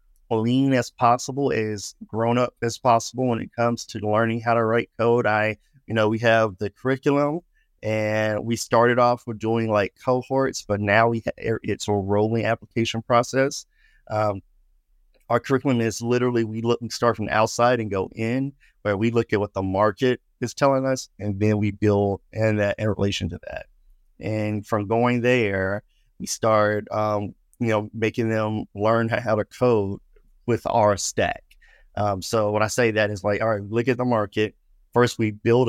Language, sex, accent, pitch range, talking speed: English, male, American, 100-115 Hz, 185 wpm